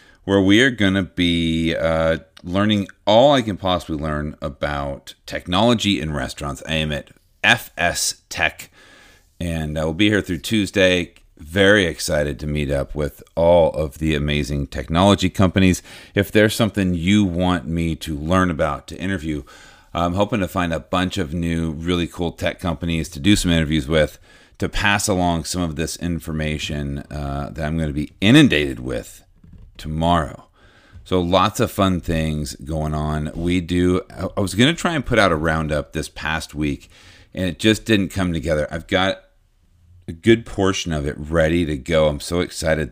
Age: 40-59